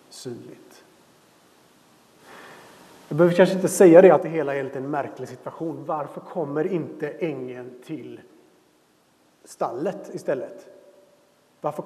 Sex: male